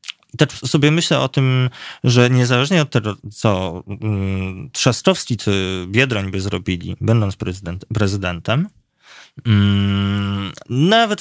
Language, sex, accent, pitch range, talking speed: Polish, male, native, 100-130 Hz, 100 wpm